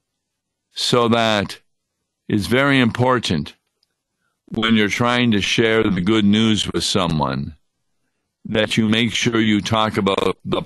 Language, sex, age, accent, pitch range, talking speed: English, male, 50-69, American, 95-120 Hz, 130 wpm